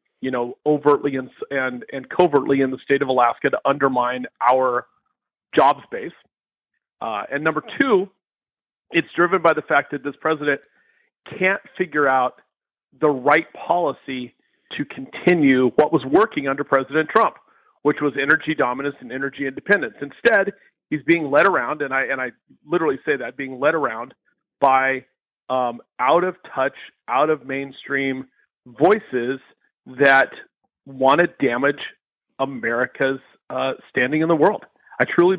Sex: male